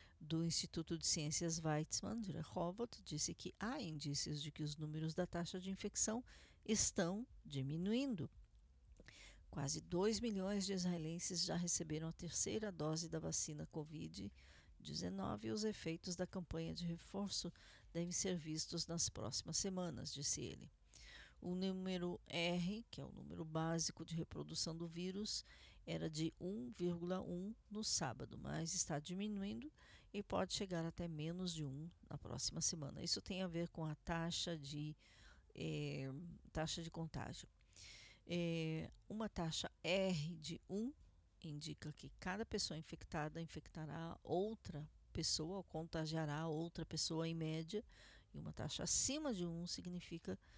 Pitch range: 155-180 Hz